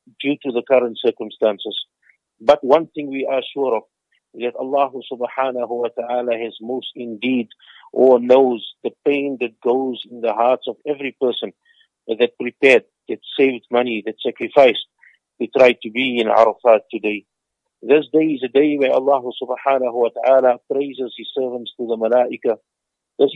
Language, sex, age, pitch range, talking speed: English, male, 50-69, 120-140 Hz, 165 wpm